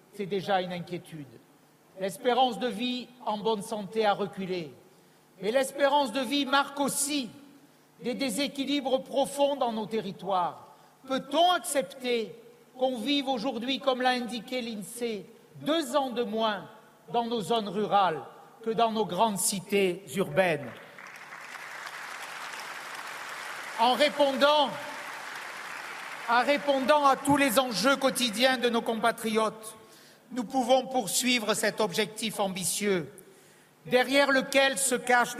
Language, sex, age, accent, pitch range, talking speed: French, male, 60-79, French, 210-270 Hz, 115 wpm